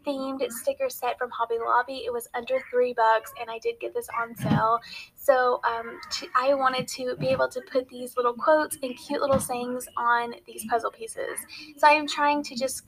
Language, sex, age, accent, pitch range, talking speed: English, female, 10-29, American, 245-300 Hz, 210 wpm